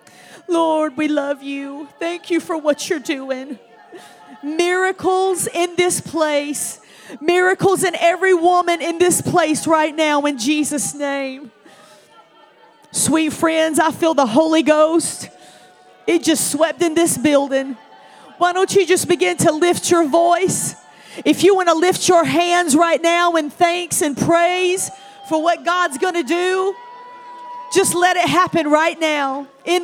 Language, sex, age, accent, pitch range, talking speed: English, female, 40-59, American, 300-360 Hz, 150 wpm